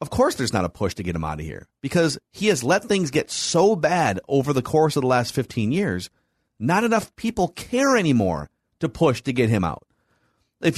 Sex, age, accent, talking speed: male, 30-49, American, 225 wpm